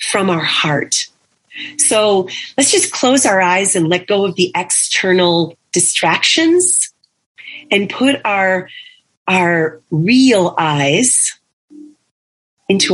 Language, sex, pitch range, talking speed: English, female, 175-275 Hz, 105 wpm